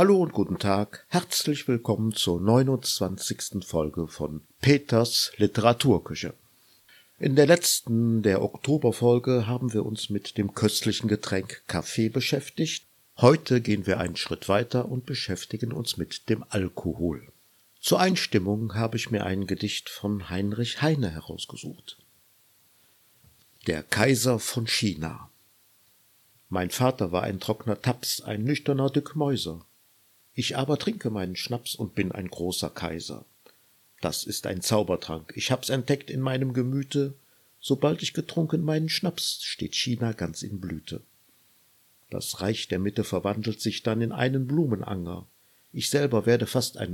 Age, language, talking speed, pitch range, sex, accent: 50-69, German, 135 wpm, 100-130 Hz, male, German